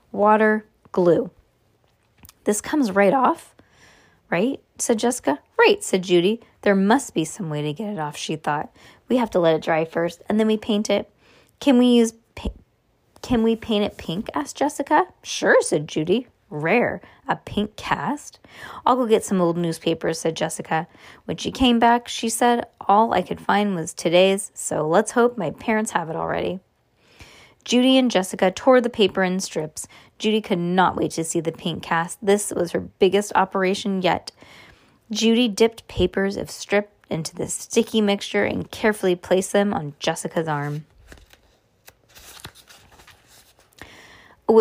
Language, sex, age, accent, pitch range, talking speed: English, female, 20-39, American, 170-230 Hz, 160 wpm